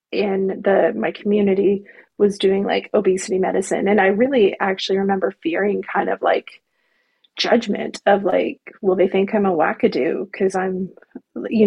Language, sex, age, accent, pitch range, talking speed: English, female, 30-49, American, 190-225 Hz, 155 wpm